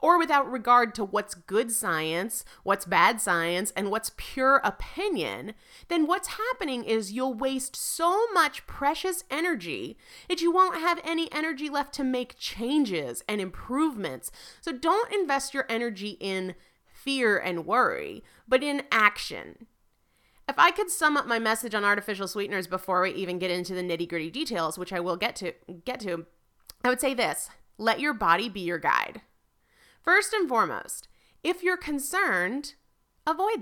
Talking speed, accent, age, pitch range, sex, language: 160 wpm, American, 30-49, 215-335 Hz, female, English